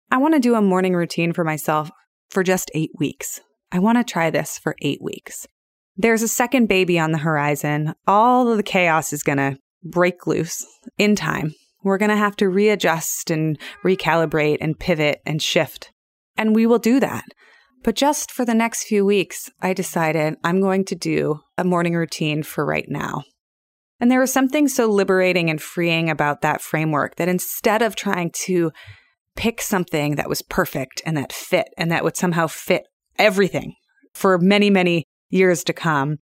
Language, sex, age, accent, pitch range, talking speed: English, female, 20-39, American, 160-225 Hz, 185 wpm